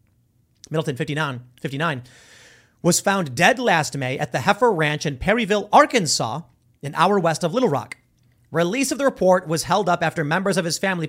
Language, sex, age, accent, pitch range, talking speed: English, male, 30-49, American, 145-200 Hz, 180 wpm